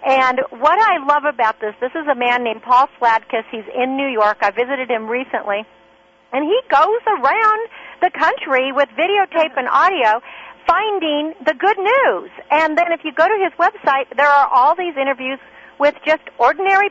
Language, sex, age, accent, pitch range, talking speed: English, female, 40-59, American, 240-310 Hz, 180 wpm